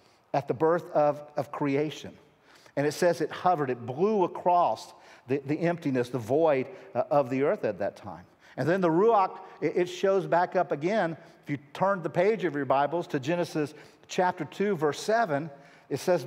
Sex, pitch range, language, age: male, 145-180 Hz, English, 50-69